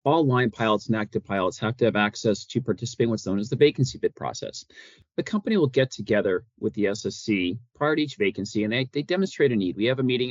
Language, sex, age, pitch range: English, male, 40-59, 105-135 Hz